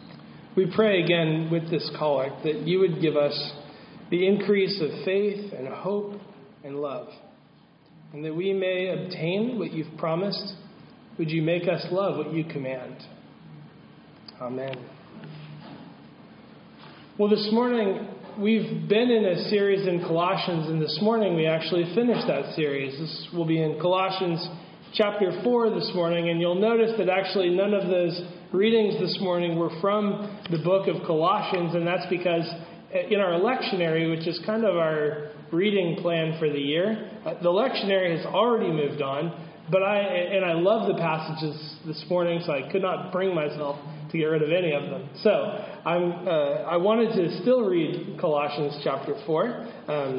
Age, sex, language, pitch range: 40-59, male, English, 160-200 Hz